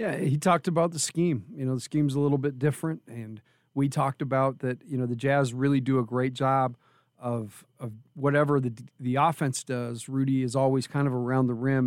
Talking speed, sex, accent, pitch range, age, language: 215 wpm, male, American, 120-140 Hz, 40-59, English